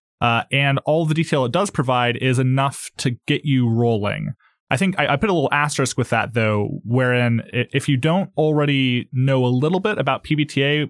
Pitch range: 115-150 Hz